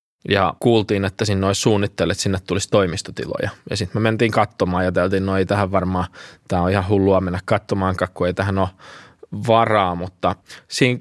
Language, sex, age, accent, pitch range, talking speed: Finnish, male, 20-39, native, 95-110 Hz, 175 wpm